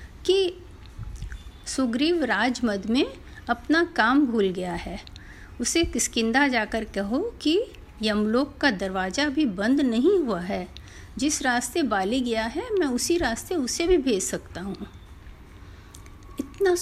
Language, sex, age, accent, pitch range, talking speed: Hindi, female, 50-69, native, 205-285 Hz, 130 wpm